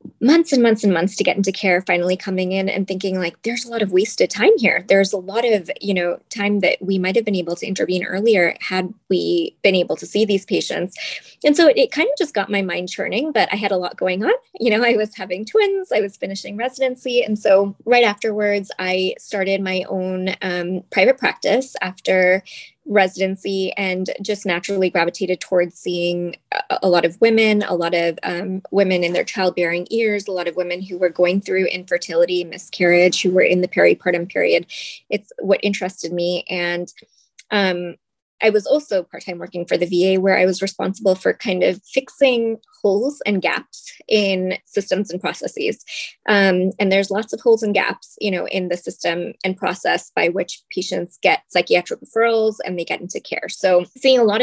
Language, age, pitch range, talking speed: English, 20-39, 180-220 Hz, 200 wpm